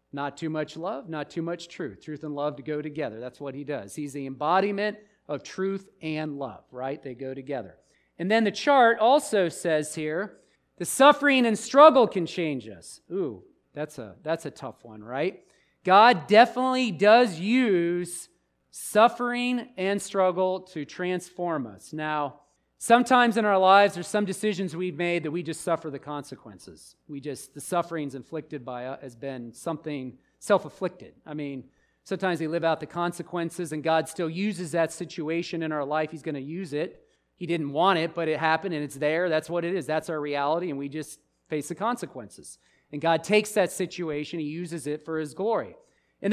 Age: 40-59